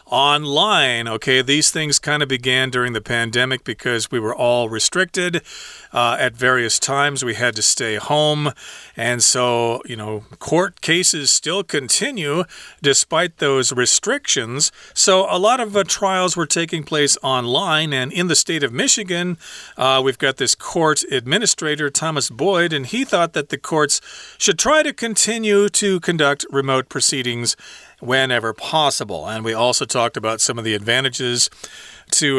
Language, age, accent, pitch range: Chinese, 40-59, American, 120-150 Hz